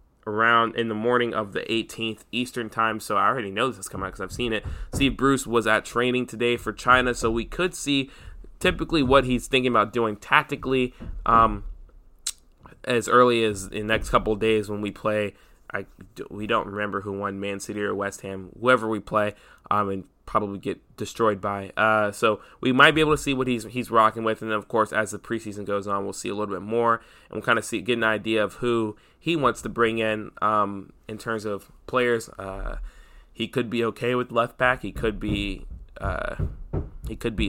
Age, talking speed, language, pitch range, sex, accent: 20-39, 215 wpm, English, 105-125 Hz, male, American